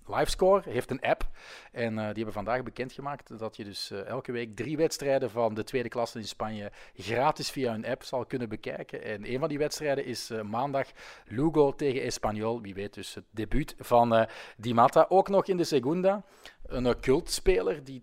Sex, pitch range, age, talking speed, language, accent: male, 115-150 Hz, 40-59, 200 wpm, English, Dutch